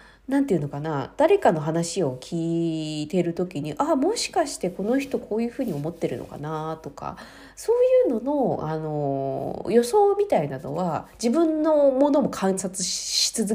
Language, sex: Japanese, female